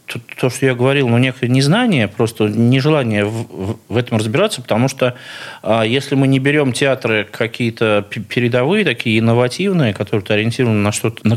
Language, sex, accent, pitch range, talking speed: Russian, male, native, 115-150 Hz, 160 wpm